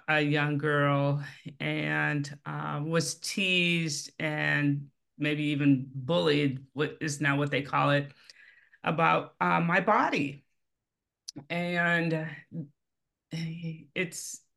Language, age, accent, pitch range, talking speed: English, 30-49, American, 145-170 Hz, 100 wpm